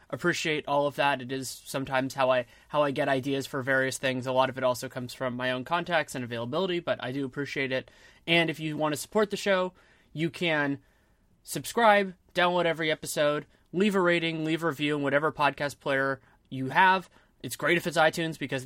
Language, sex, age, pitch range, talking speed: English, male, 20-39, 135-160 Hz, 205 wpm